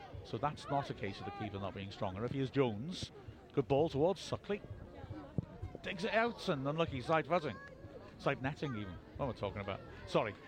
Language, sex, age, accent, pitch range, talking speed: English, male, 50-69, British, 115-150 Hz, 200 wpm